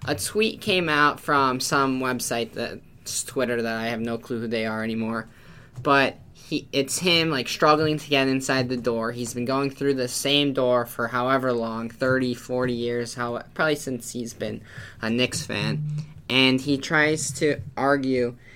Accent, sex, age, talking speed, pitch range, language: American, male, 10-29, 175 wpm, 125-145 Hz, English